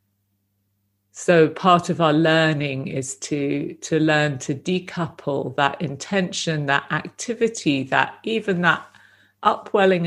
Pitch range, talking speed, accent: 130-160 Hz, 115 wpm, British